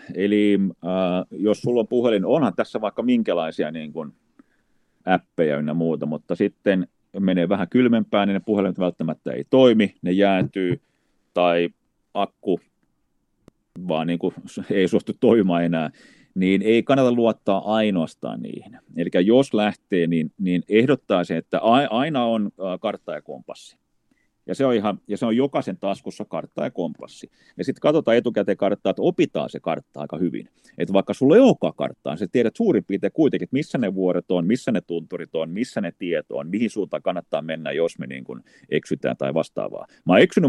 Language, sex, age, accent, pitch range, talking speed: Finnish, male, 30-49, native, 90-115 Hz, 170 wpm